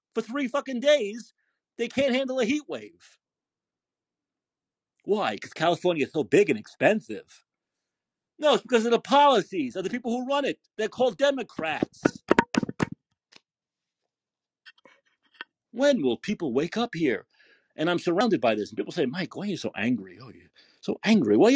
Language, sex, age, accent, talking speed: English, male, 40-59, American, 160 wpm